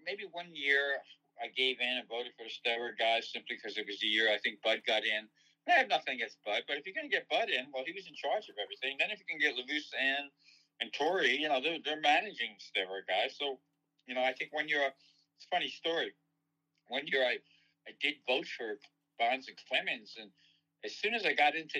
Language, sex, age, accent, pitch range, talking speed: English, male, 60-79, American, 120-150 Hz, 240 wpm